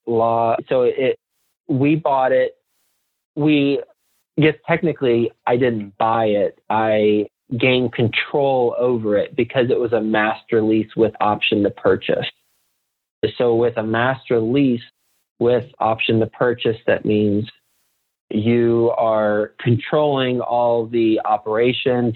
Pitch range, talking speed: 110-120 Hz, 120 wpm